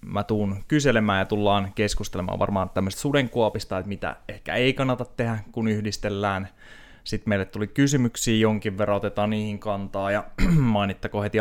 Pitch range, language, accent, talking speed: 90-110 Hz, Finnish, native, 155 wpm